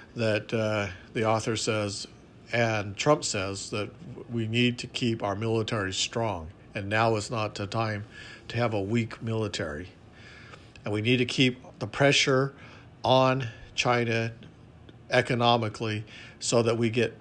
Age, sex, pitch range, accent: 50-69, male, 110-120 Hz, American